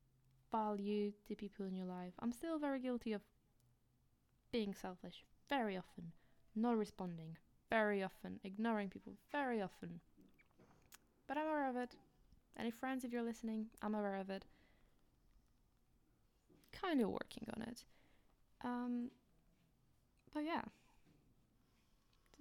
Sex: female